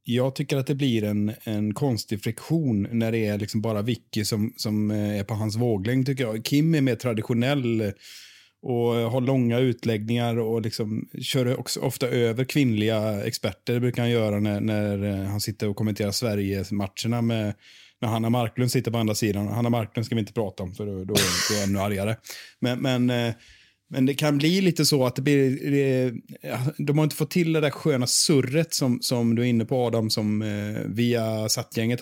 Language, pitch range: Swedish, 110-130 Hz